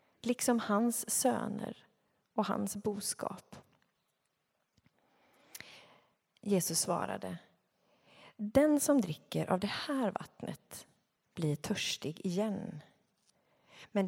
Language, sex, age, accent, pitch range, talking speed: Swedish, female, 30-49, native, 170-220 Hz, 80 wpm